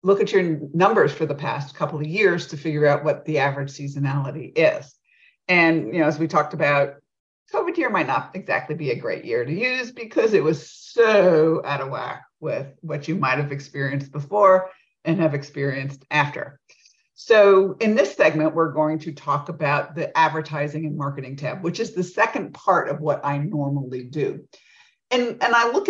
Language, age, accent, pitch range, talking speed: English, 50-69, American, 145-195 Hz, 190 wpm